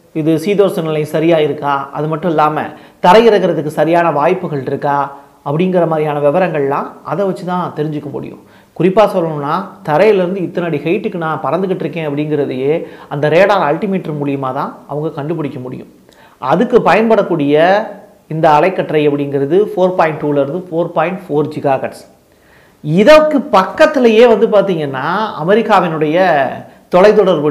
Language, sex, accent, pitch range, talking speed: Tamil, male, native, 150-200 Hz, 120 wpm